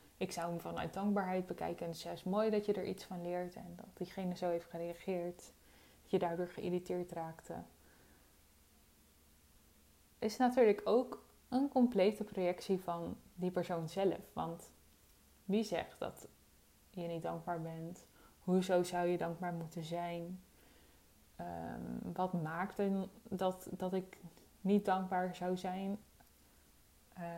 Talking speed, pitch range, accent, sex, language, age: 135 wpm, 165-195 Hz, Dutch, female, Dutch, 20-39